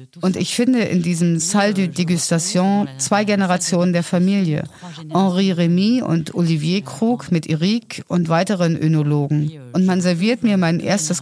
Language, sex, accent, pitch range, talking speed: German, female, German, 165-205 Hz, 150 wpm